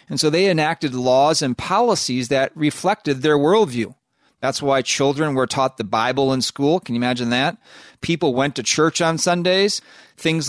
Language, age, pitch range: English, 40-59, 130-180 Hz